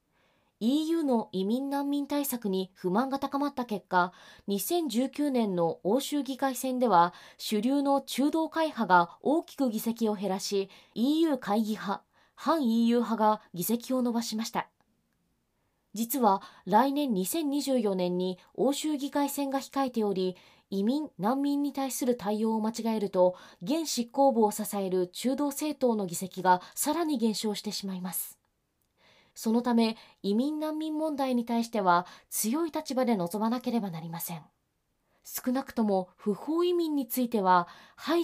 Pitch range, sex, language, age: 200-280 Hz, female, Japanese, 20-39